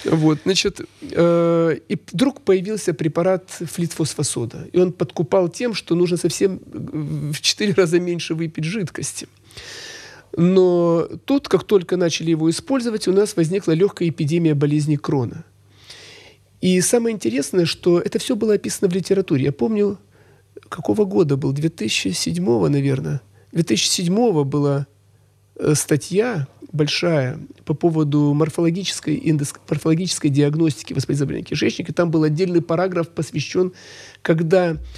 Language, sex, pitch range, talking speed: Russian, male, 145-185 Hz, 120 wpm